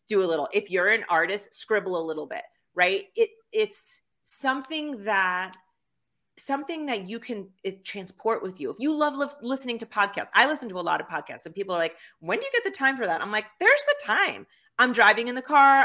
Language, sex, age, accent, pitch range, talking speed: English, female, 30-49, American, 190-270 Hz, 225 wpm